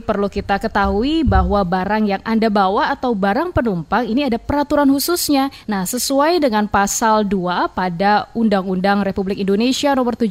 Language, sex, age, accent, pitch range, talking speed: Indonesian, female, 20-39, native, 200-250 Hz, 145 wpm